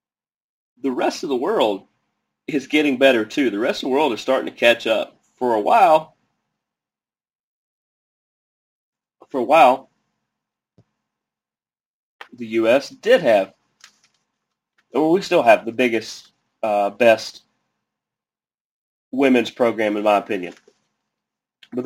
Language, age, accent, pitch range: English, 30-49, American, 115-140 Hz